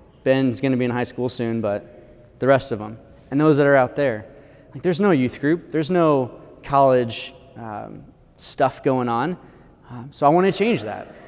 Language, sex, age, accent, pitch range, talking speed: English, male, 20-39, American, 120-155 Hz, 200 wpm